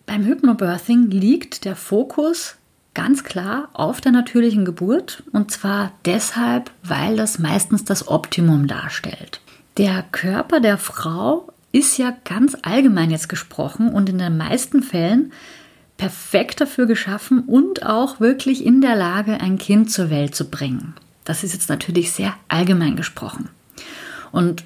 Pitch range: 175-250 Hz